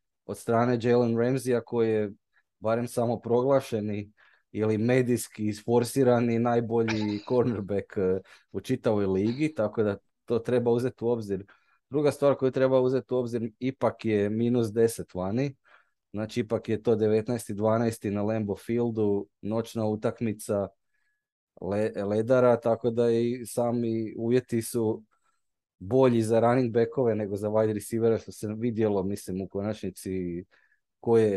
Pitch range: 105-120 Hz